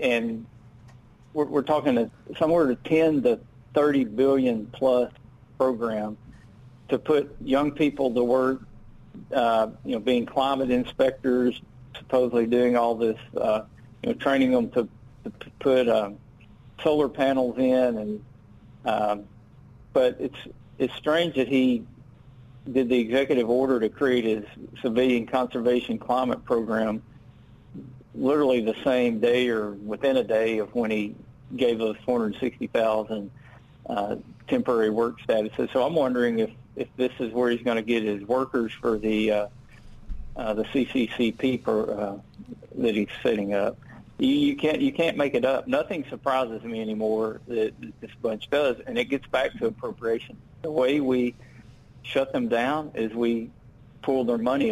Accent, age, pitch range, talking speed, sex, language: American, 50-69, 115-130 Hz, 150 wpm, male, English